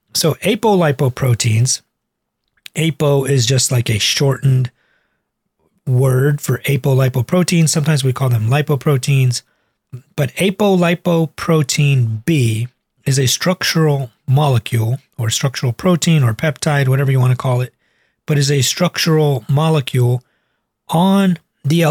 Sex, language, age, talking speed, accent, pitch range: male, English, 40-59, 110 wpm, American, 125-150 Hz